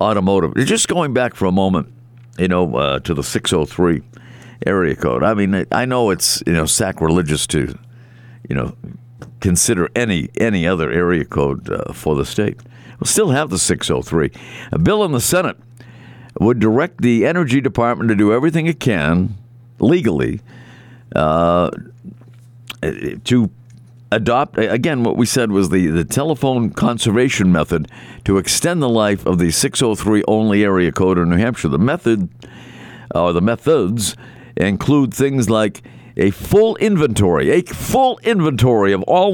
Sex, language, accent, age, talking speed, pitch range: male, English, American, 60-79, 150 wpm, 105-130 Hz